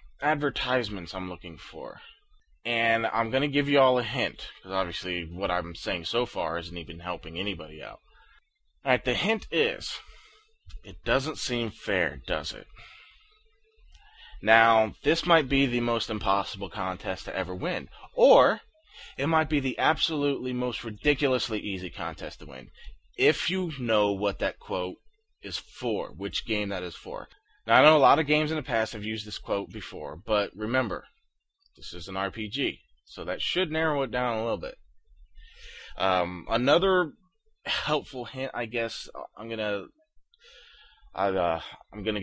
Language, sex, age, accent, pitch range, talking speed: English, male, 20-39, American, 100-150 Hz, 160 wpm